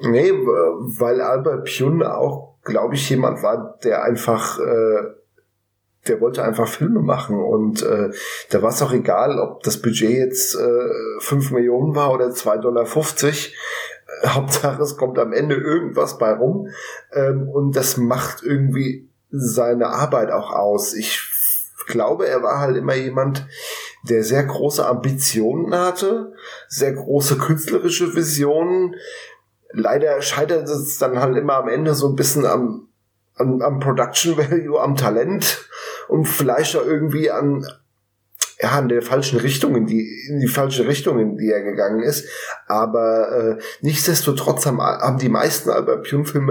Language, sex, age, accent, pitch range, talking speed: German, male, 10-29, German, 120-165 Hz, 145 wpm